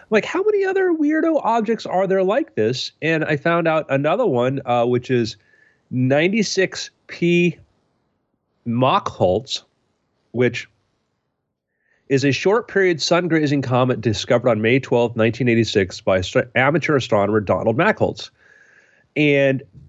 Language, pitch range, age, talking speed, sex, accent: English, 115-160 Hz, 30-49, 115 wpm, male, American